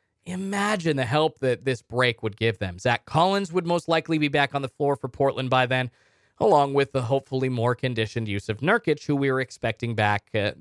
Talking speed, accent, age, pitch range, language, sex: 215 wpm, American, 20-39, 115-170 Hz, English, male